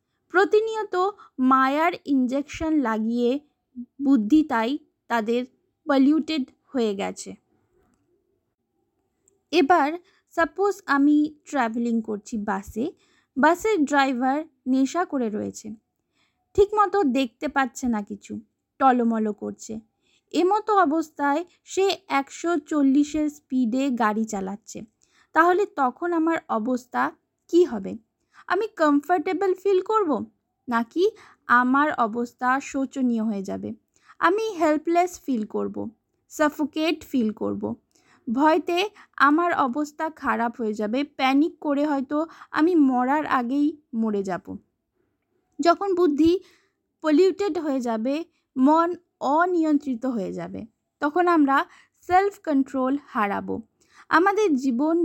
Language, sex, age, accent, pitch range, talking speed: Bengali, female, 20-39, native, 250-345 Hz, 85 wpm